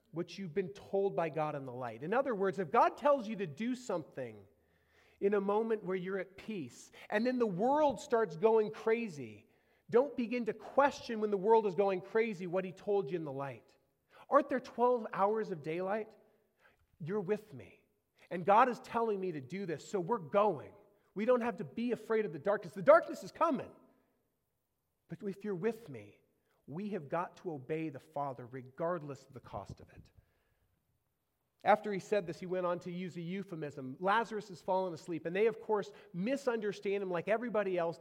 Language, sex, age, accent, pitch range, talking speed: English, male, 30-49, American, 165-225 Hz, 195 wpm